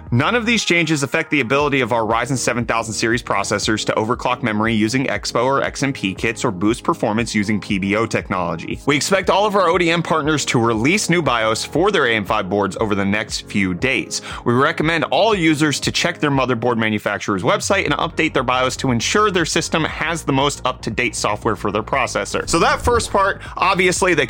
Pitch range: 115-175 Hz